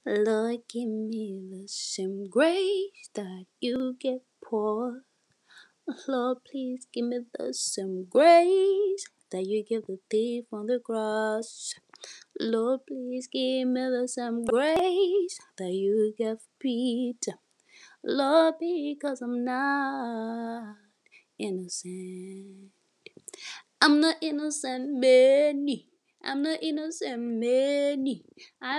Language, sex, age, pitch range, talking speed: English, female, 20-39, 215-320 Hz, 100 wpm